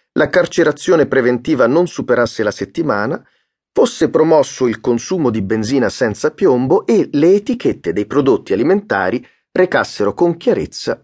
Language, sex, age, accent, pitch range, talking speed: Italian, male, 40-59, native, 110-160 Hz, 130 wpm